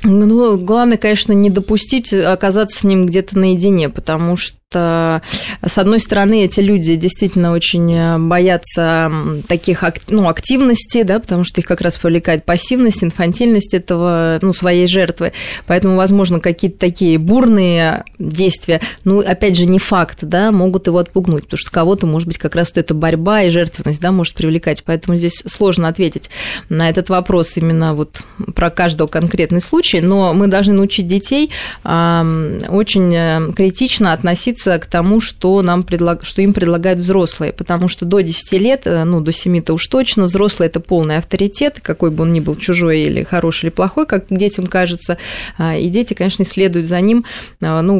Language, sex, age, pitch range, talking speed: Russian, female, 20-39, 170-195 Hz, 165 wpm